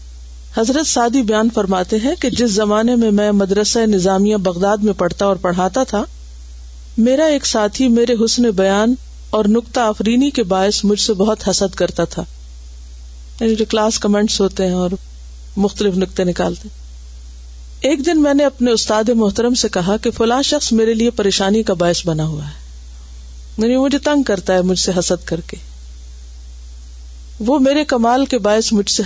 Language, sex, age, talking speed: Urdu, female, 50-69, 165 wpm